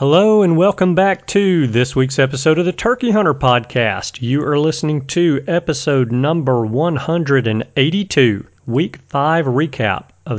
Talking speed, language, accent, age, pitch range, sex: 140 wpm, English, American, 40-59, 115-155 Hz, male